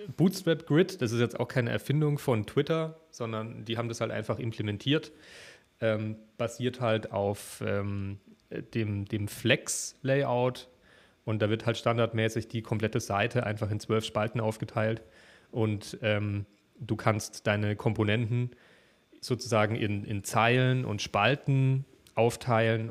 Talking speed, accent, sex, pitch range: 135 wpm, German, male, 110-130 Hz